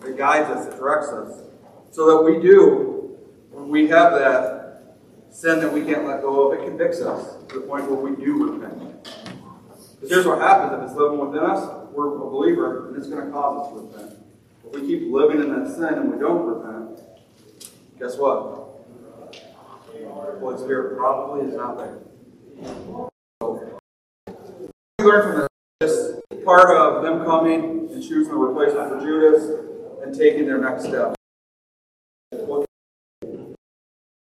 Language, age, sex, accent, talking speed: English, 40-59, male, American, 160 wpm